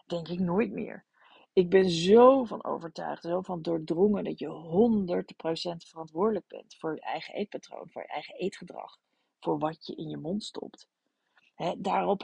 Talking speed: 170 wpm